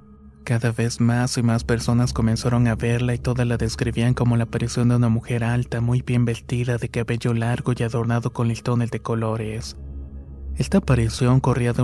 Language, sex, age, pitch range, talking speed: Spanish, male, 20-39, 115-120 Hz, 190 wpm